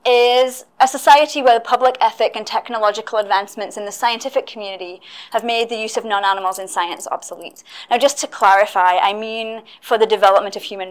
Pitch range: 200-240 Hz